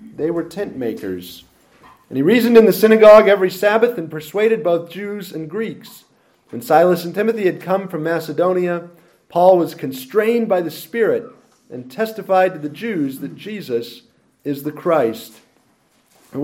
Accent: American